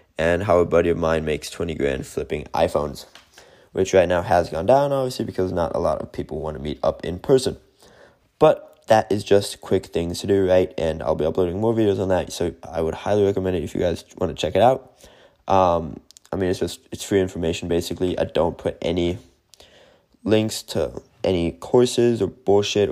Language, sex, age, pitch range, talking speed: English, male, 20-39, 85-105 Hz, 210 wpm